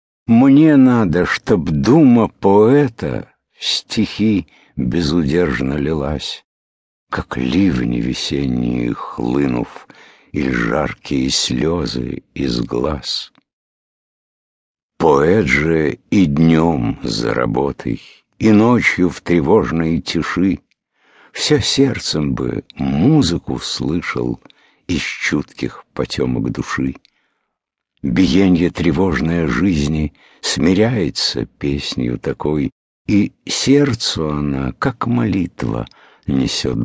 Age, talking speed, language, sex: 60-79, 80 wpm, English, male